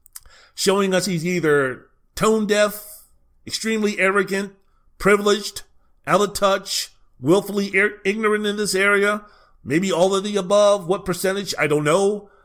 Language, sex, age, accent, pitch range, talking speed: English, male, 40-59, American, 130-195 Hz, 130 wpm